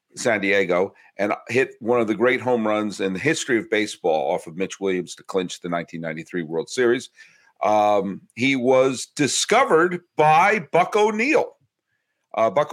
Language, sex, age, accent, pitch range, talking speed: English, male, 40-59, American, 100-135 Hz, 155 wpm